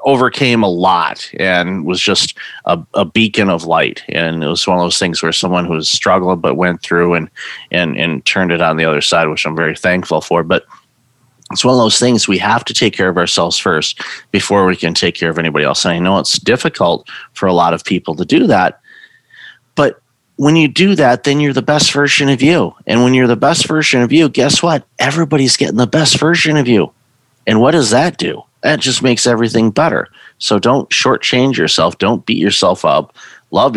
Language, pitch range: English, 90-130 Hz